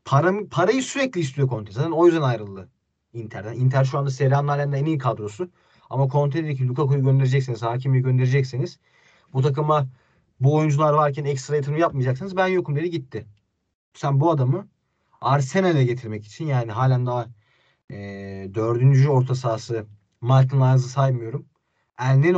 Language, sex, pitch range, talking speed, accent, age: Turkish, male, 120-160 Hz, 145 wpm, native, 30-49